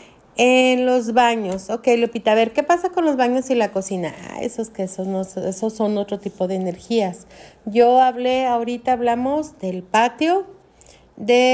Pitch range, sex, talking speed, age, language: 195-245 Hz, female, 165 wpm, 40-59, Spanish